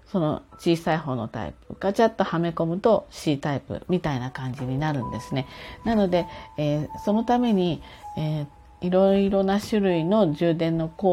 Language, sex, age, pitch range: Japanese, female, 40-59, 145-215 Hz